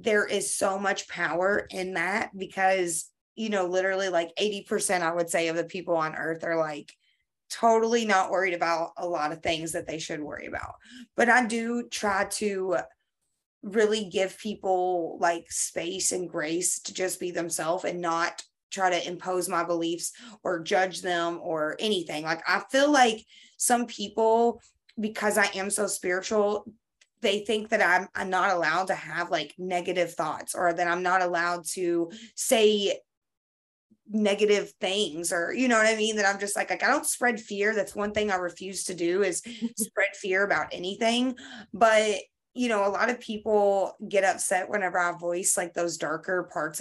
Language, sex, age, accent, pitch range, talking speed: English, female, 20-39, American, 175-210 Hz, 180 wpm